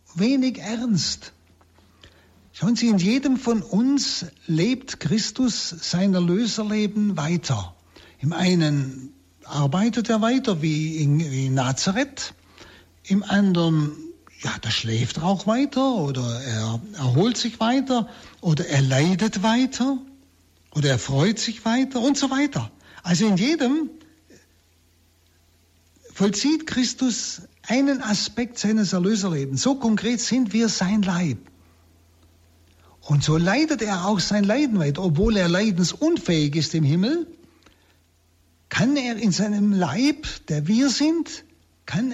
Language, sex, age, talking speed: German, male, 60-79, 120 wpm